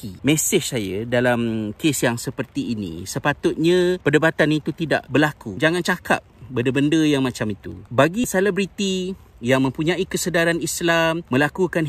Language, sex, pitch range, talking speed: Malay, male, 130-170 Hz, 125 wpm